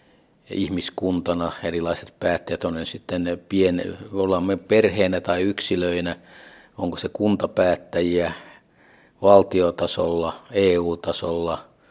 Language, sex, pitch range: Finnish, male, 85-95 Hz